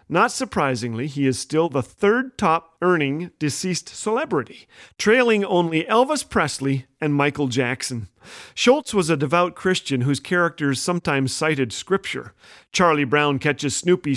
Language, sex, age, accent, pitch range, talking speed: English, male, 40-59, American, 140-215 Hz, 135 wpm